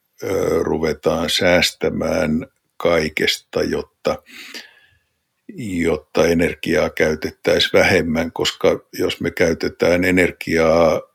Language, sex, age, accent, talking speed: Finnish, male, 60-79, native, 70 wpm